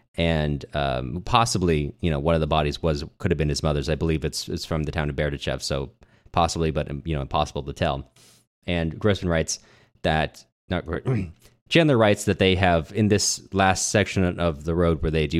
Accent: American